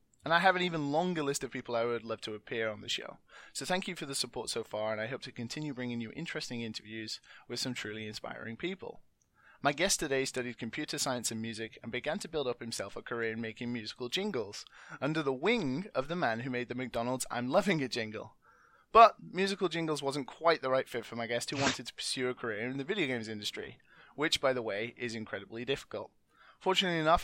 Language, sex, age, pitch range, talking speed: English, male, 20-39, 120-155 Hz, 230 wpm